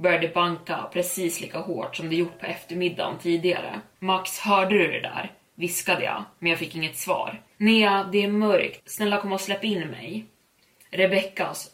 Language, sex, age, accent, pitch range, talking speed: Swedish, female, 20-39, native, 170-200 Hz, 175 wpm